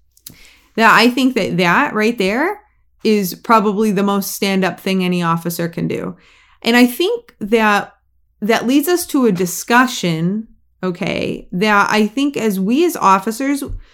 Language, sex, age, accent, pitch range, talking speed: English, female, 20-39, American, 180-255 Hz, 150 wpm